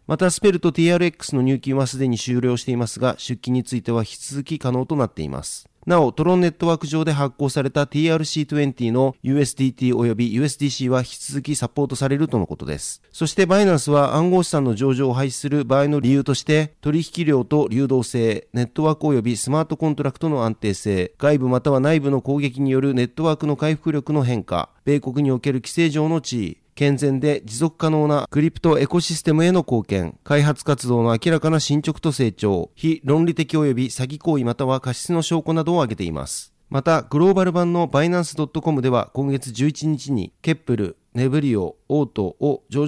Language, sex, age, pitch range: Japanese, male, 40-59, 125-155 Hz